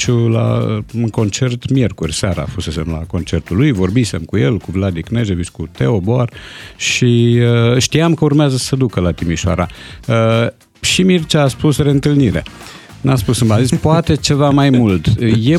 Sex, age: male, 50-69